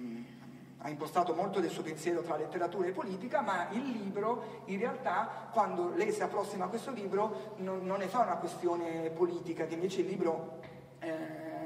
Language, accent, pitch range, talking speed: Italian, native, 175-220 Hz, 175 wpm